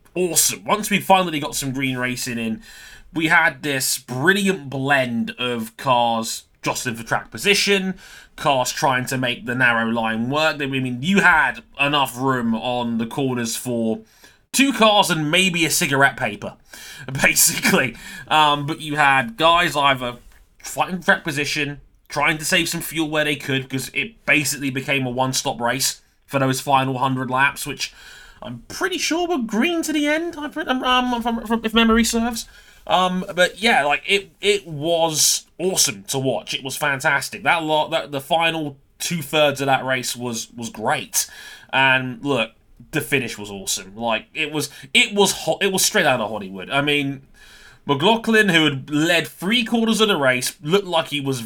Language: English